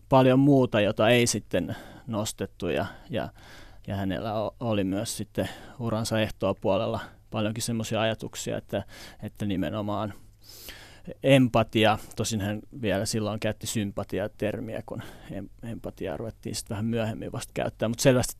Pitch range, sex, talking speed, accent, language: 105-120 Hz, male, 125 wpm, native, Finnish